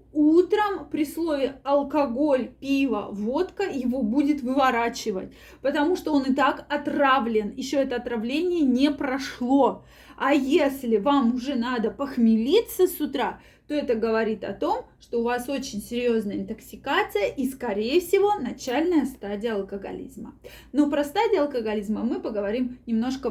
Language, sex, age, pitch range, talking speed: Russian, female, 20-39, 235-300 Hz, 135 wpm